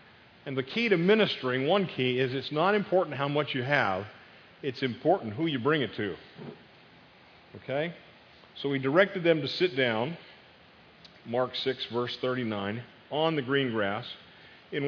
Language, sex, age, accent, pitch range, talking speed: English, male, 40-59, American, 120-155 Hz, 155 wpm